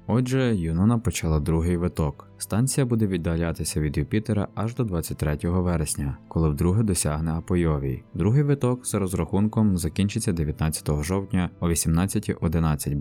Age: 20-39